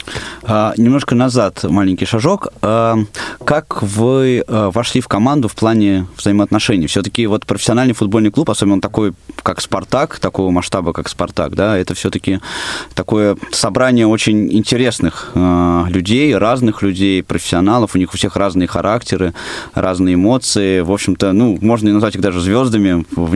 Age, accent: 20-39, native